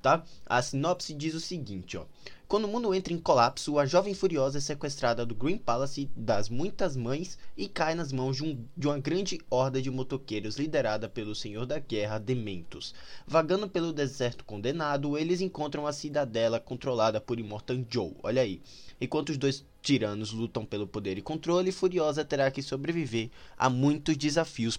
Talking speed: 175 wpm